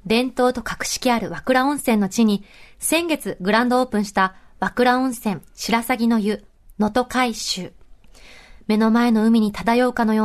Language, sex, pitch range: Japanese, female, 205-250 Hz